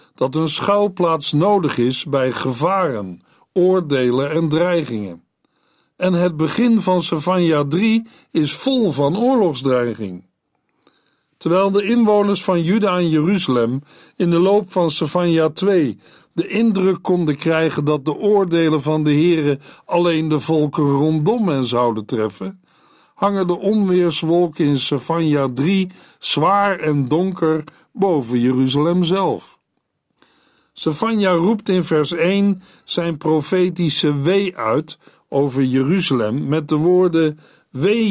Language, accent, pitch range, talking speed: Dutch, Dutch, 145-190 Hz, 120 wpm